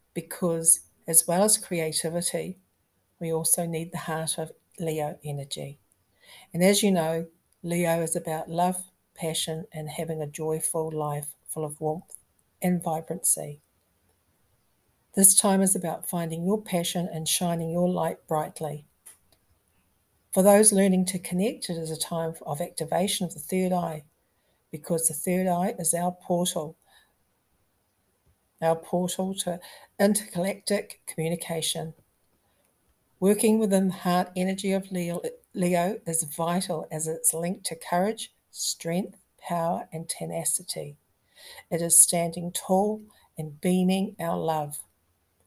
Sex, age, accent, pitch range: female, 60-79, Australian, 160-185 Hz